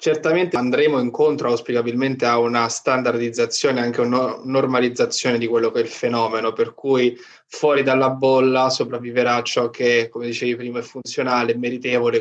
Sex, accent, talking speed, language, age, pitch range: male, native, 150 wpm, Italian, 20-39, 125-145 Hz